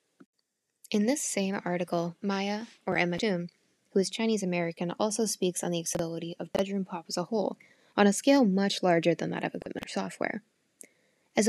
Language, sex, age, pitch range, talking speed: English, female, 10-29, 175-210 Hz, 180 wpm